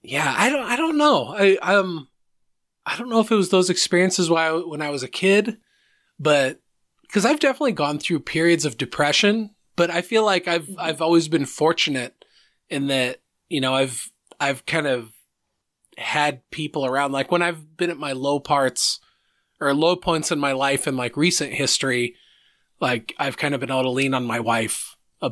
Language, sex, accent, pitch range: English, male, American, 140-195 Hz